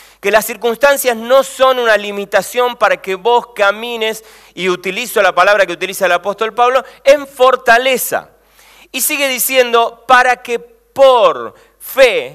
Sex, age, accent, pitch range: male, 40-59, Argentinian, 195-255 Hz